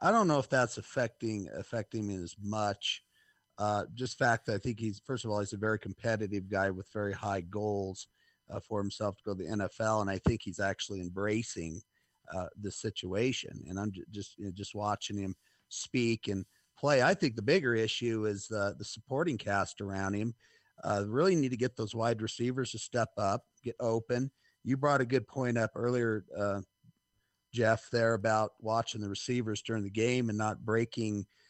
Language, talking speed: English, 190 wpm